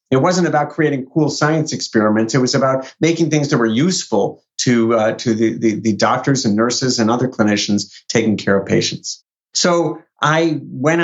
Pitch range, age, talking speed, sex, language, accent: 115-165 Hz, 50-69, 185 wpm, male, English, American